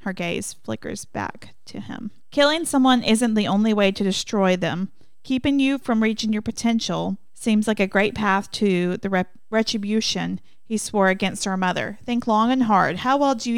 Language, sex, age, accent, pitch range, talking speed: English, female, 40-59, American, 180-225 Hz, 190 wpm